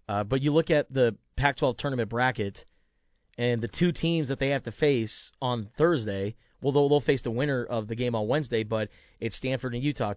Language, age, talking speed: English, 30-49, 205 wpm